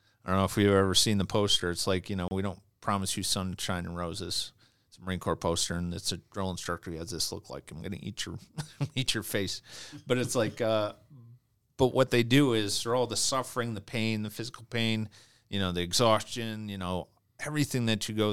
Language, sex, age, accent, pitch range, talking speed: English, male, 40-59, American, 100-120 Hz, 225 wpm